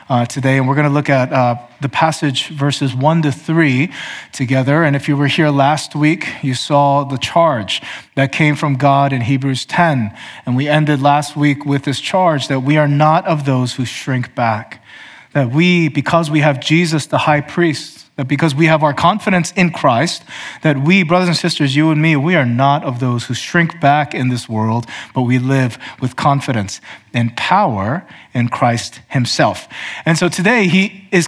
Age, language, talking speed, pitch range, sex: 30-49, English, 195 wpm, 130-160 Hz, male